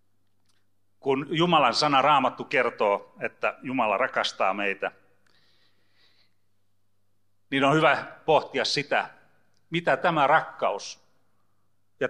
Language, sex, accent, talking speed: Finnish, male, native, 90 wpm